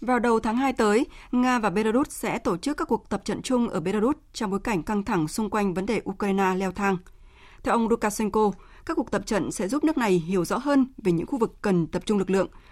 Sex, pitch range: female, 185-240 Hz